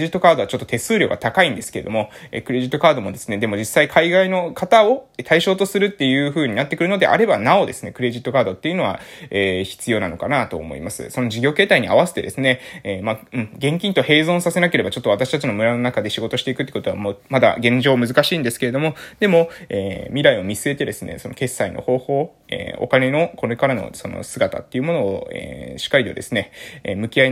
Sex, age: male, 20-39